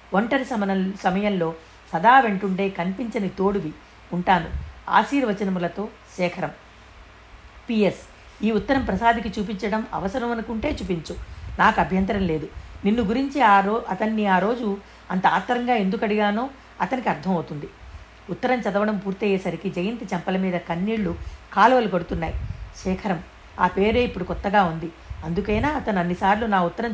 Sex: female